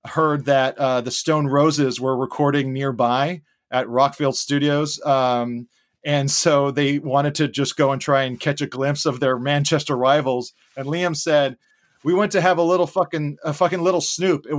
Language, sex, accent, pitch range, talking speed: English, male, American, 135-165 Hz, 185 wpm